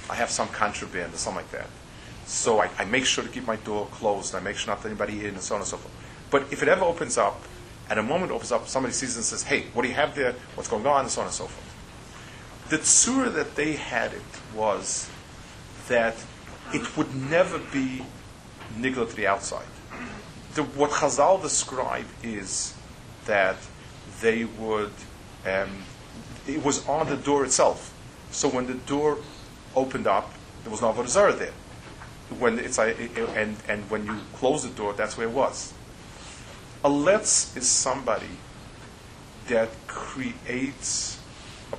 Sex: male